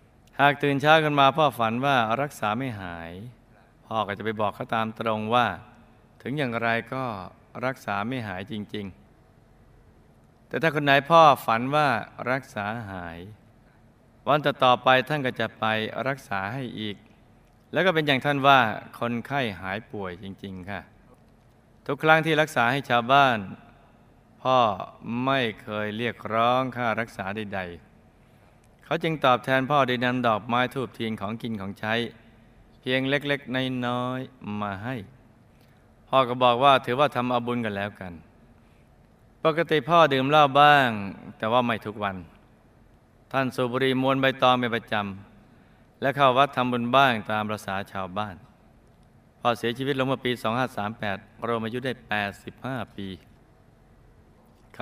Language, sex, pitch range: Thai, male, 105-130 Hz